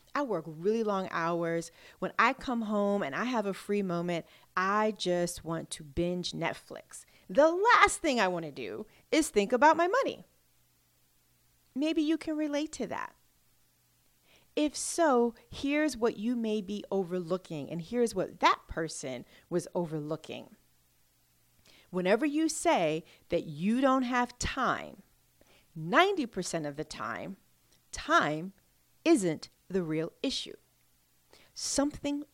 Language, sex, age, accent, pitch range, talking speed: English, female, 40-59, American, 160-235 Hz, 135 wpm